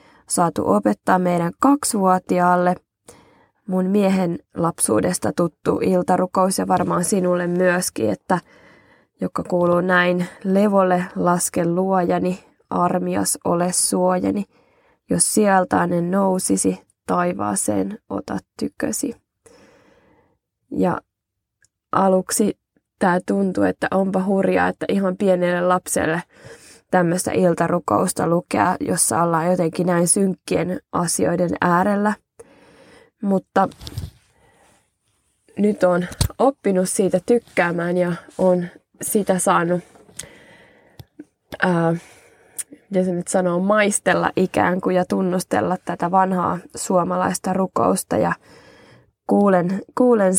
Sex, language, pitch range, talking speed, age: female, Finnish, 175-190 Hz, 90 wpm, 20-39